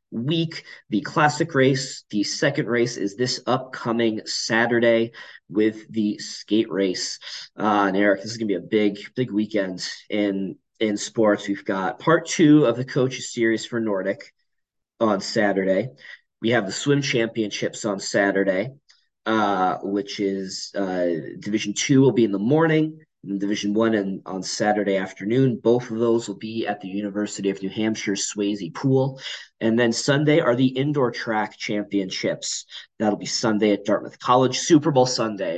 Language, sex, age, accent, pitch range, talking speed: English, male, 20-39, American, 100-120 Hz, 160 wpm